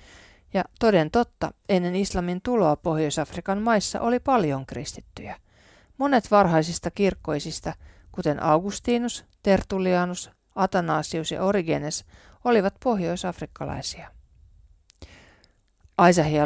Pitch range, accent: 140-190 Hz, native